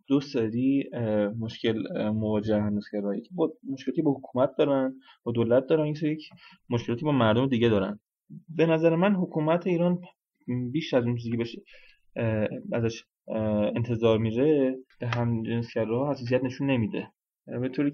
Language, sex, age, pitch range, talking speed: English, male, 20-39, 110-140 Hz, 140 wpm